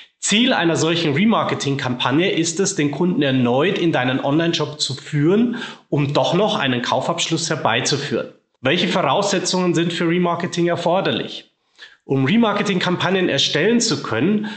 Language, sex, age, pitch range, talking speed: German, male, 30-49, 140-180 Hz, 130 wpm